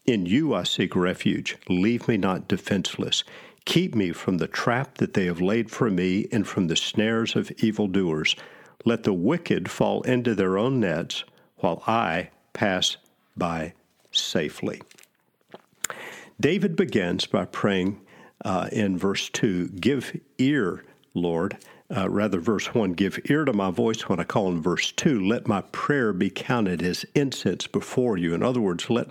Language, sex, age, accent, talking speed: English, male, 50-69, American, 160 wpm